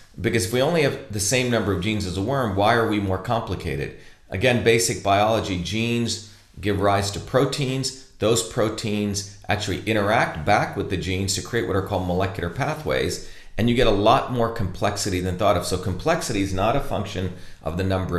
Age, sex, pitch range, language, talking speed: 40-59, male, 95-115 Hz, English, 200 wpm